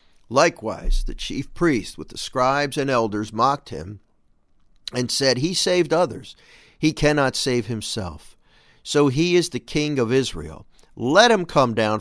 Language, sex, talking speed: English, male, 155 wpm